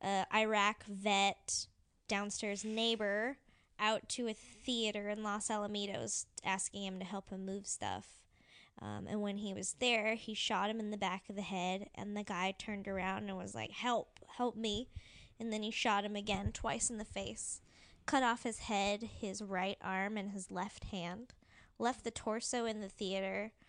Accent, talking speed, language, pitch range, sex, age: American, 180 wpm, English, 195-225 Hz, female, 10-29